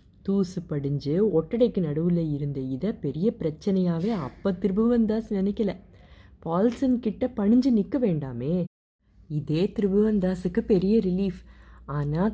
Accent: native